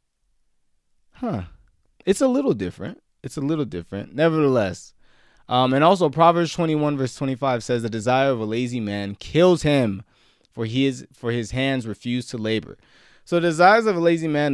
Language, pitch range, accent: English, 100-130 Hz, American